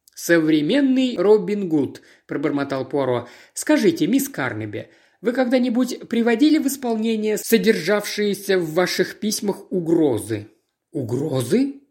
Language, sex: Russian, male